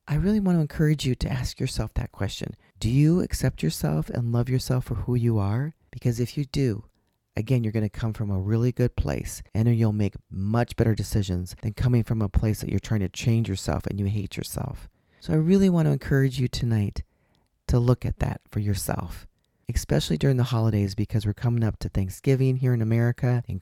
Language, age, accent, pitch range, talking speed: English, 40-59, American, 100-130 Hz, 215 wpm